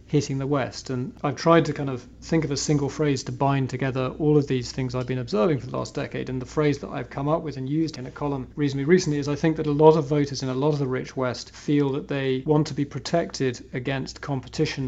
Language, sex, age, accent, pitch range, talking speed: English, male, 40-59, British, 130-150 Hz, 270 wpm